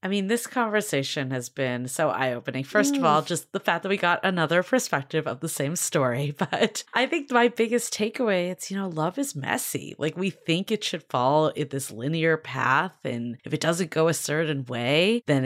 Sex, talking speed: female, 215 wpm